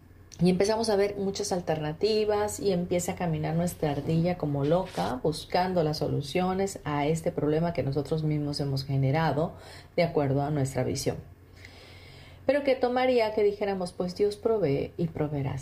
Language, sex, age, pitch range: Spanish, female, 40-59, 160-235 Hz